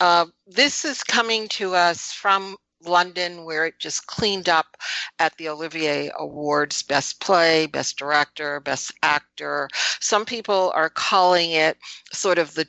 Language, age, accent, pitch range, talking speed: English, 60-79, American, 150-180 Hz, 145 wpm